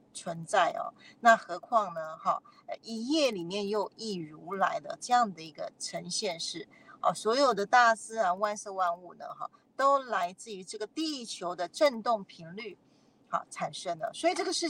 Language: Chinese